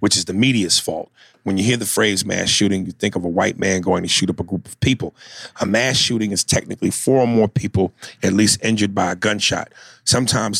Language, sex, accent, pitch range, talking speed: English, male, American, 95-115 Hz, 240 wpm